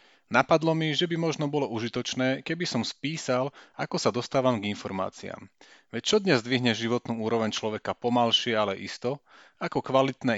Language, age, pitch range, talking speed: Slovak, 40-59, 105-135 Hz, 155 wpm